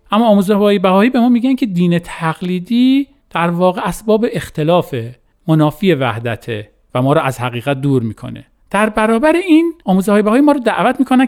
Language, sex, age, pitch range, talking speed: Persian, male, 40-59, 160-235 Hz, 175 wpm